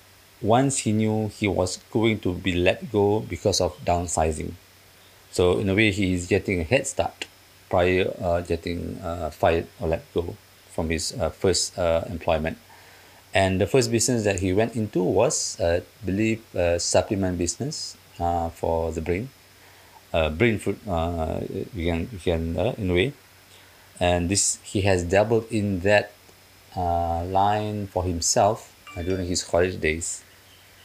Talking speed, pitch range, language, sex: 160 wpm, 90-110 Hz, English, male